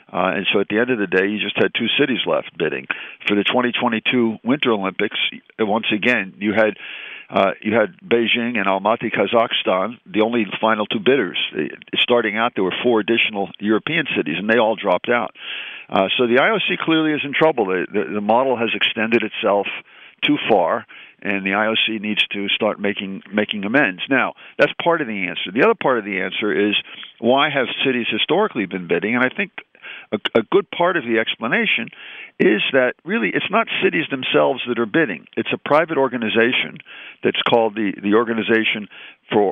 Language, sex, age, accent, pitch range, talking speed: English, male, 50-69, American, 105-125 Hz, 190 wpm